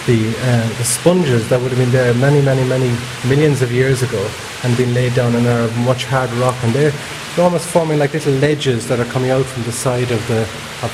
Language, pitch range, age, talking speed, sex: English, 115-130 Hz, 30-49, 225 wpm, male